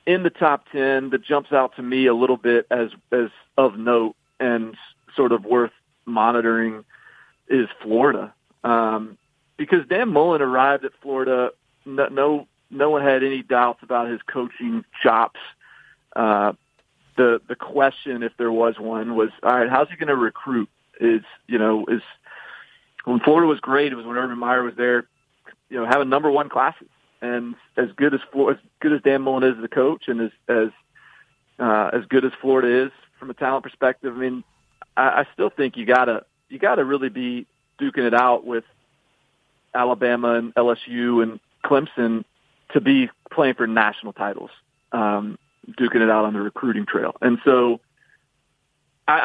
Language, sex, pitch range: English, male, 120-135 Hz